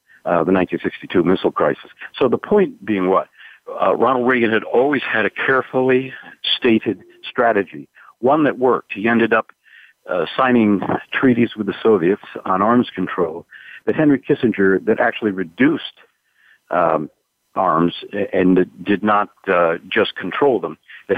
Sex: male